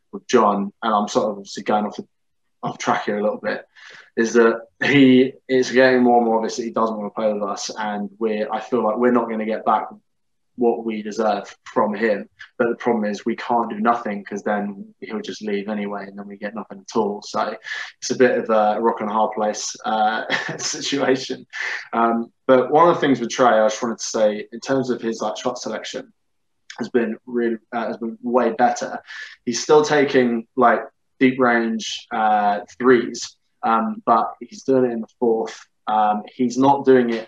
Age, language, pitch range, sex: 20-39, English, 110-125 Hz, male